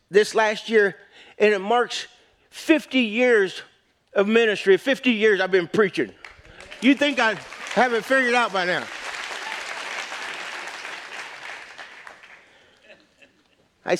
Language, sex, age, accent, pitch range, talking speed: English, male, 50-69, American, 160-225 Hz, 105 wpm